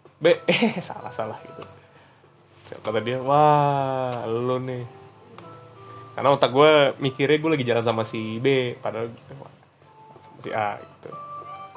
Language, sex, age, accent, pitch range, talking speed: Indonesian, male, 20-39, native, 130-150 Hz, 120 wpm